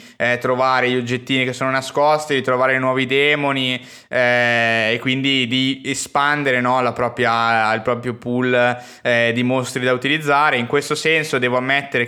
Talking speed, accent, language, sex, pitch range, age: 145 wpm, native, Italian, male, 125-140 Hz, 20-39